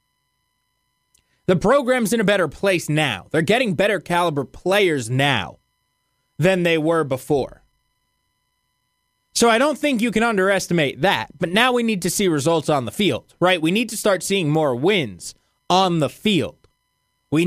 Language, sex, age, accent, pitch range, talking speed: English, male, 20-39, American, 145-200 Hz, 160 wpm